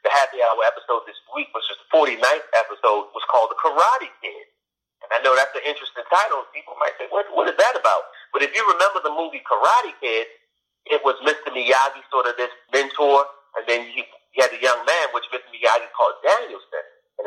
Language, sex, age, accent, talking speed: English, male, 40-59, American, 210 wpm